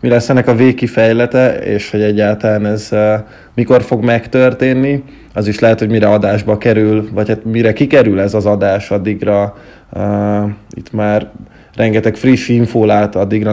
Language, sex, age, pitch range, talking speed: Hungarian, male, 20-39, 105-120 Hz, 155 wpm